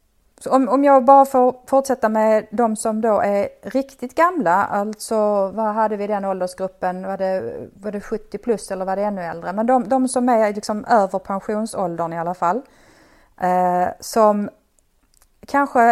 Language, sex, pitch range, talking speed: Swedish, female, 185-235 Hz, 170 wpm